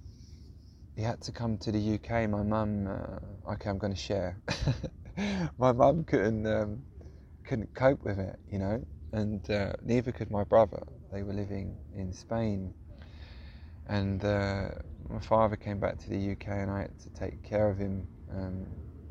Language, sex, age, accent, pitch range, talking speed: English, male, 20-39, British, 85-105 Hz, 170 wpm